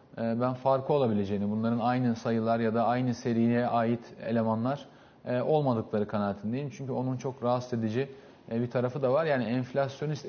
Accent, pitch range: native, 120-160 Hz